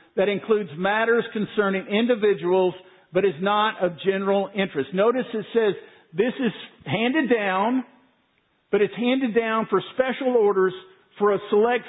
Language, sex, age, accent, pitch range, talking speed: English, male, 50-69, American, 180-220 Hz, 140 wpm